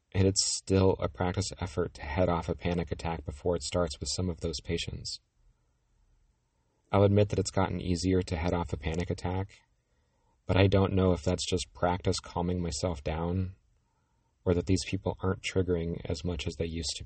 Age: 40-59